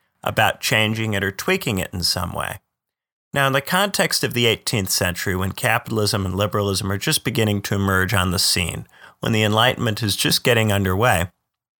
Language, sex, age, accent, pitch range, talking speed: English, male, 40-59, American, 100-125 Hz, 185 wpm